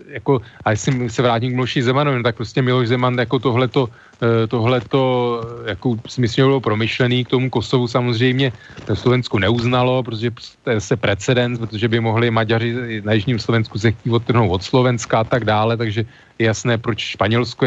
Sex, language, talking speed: male, Slovak, 175 wpm